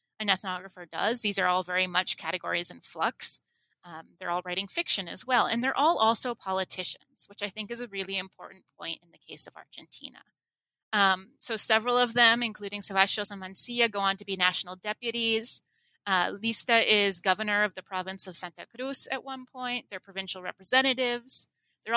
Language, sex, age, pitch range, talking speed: English, female, 30-49, 190-240 Hz, 185 wpm